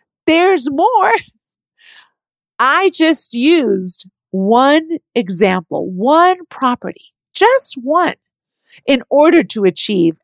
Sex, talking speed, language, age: female, 90 wpm, English, 50-69